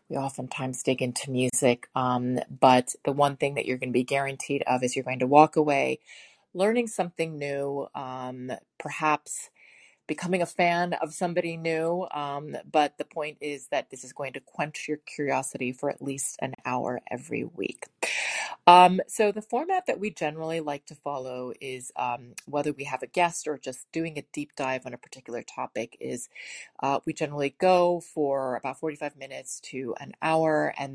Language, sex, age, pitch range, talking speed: English, female, 30-49, 130-155 Hz, 180 wpm